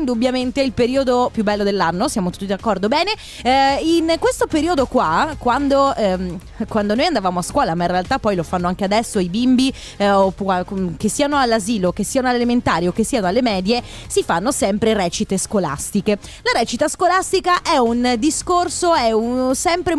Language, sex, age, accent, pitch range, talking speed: Italian, female, 20-39, native, 210-295 Hz, 175 wpm